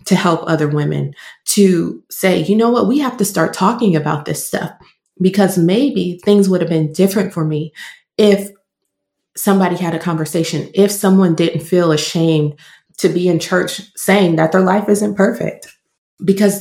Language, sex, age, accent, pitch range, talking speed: English, female, 20-39, American, 160-195 Hz, 170 wpm